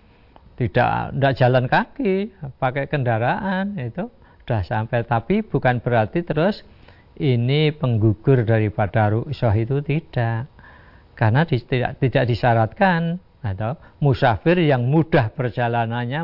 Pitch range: 105-135 Hz